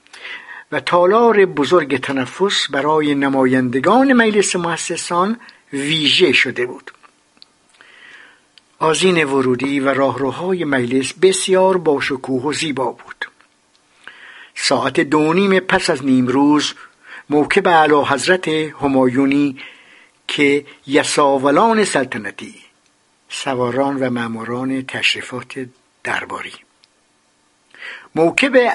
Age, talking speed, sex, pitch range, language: 60-79, 80 wpm, male, 135-175 Hz, Persian